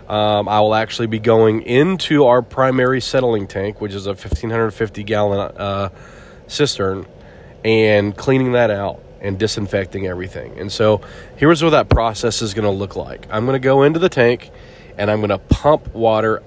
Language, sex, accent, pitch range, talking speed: English, male, American, 105-125 Hz, 170 wpm